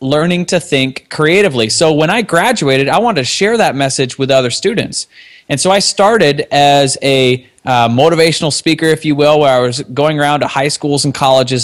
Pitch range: 130-160 Hz